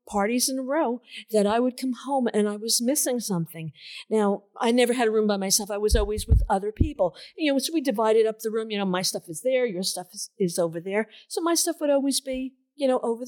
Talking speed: 260 wpm